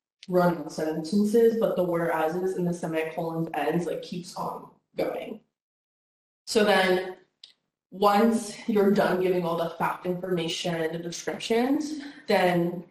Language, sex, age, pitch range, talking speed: English, female, 20-39, 170-210 Hz, 130 wpm